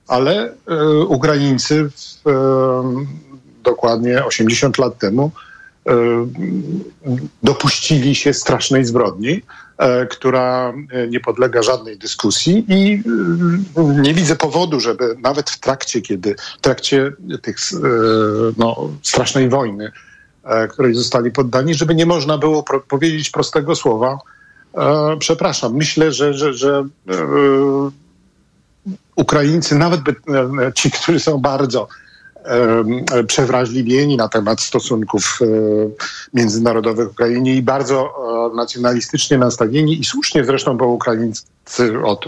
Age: 50-69